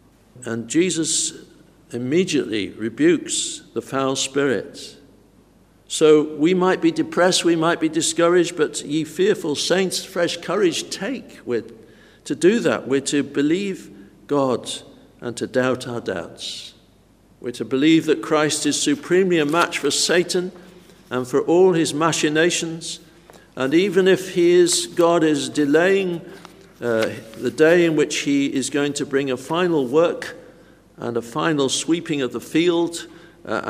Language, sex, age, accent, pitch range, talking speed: English, male, 60-79, British, 125-165 Hz, 145 wpm